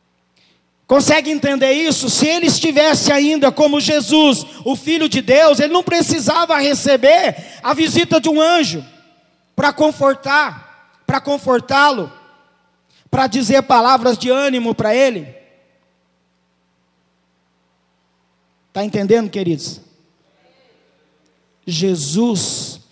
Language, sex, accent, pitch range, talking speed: Portuguese, male, Brazilian, 160-260 Hz, 95 wpm